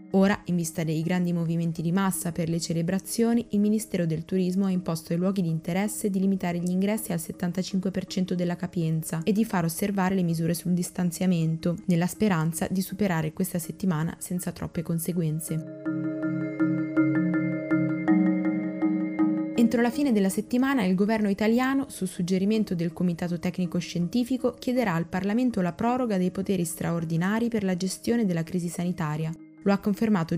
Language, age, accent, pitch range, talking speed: Italian, 20-39, native, 170-205 Hz, 150 wpm